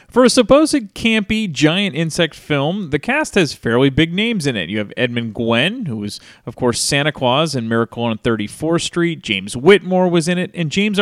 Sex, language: male, English